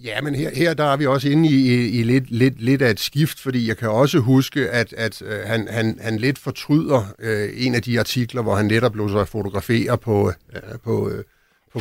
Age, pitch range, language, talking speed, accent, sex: 60-79, 105-130 Hz, Danish, 215 wpm, native, male